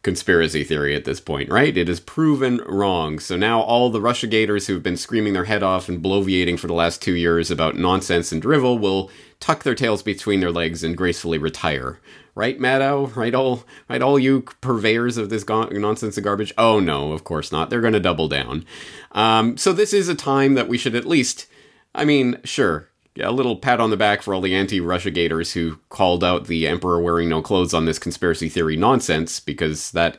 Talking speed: 210 wpm